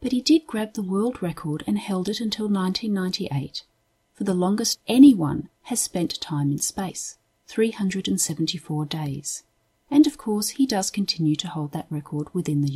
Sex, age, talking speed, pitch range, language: female, 40-59, 165 wpm, 150-215 Hz, English